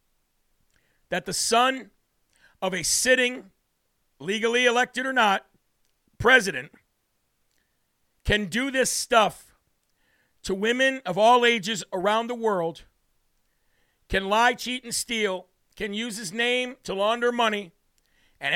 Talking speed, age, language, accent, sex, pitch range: 115 wpm, 50-69, English, American, male, 200-240 Hz